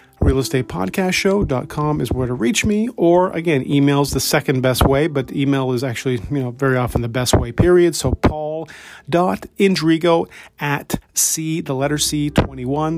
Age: 40-59